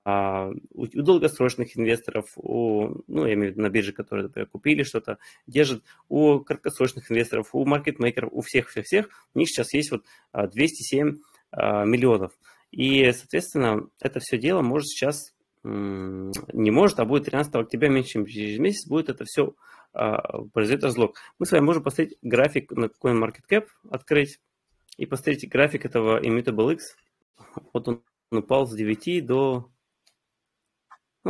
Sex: male